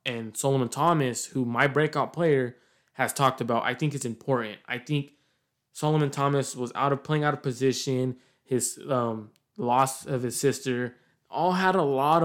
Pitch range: 125-145 Hz